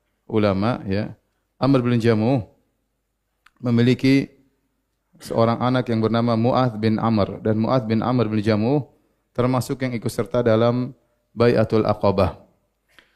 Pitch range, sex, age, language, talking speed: 110-125 Hz, male, 30-49, Indonesian, 120 wpm